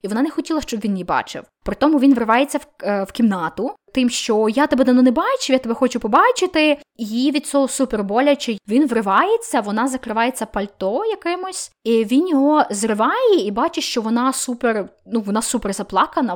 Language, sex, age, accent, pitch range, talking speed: Ukrainian, female, 20-39, native, 225-295 Hz, 190 wpm